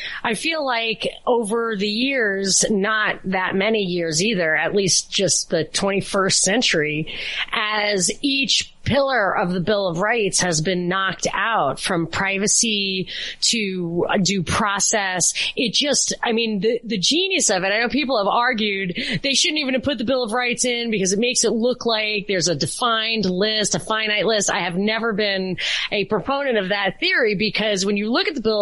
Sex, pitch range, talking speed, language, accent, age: female, 195-240 Hz, 180 wpm, English, American, 30-49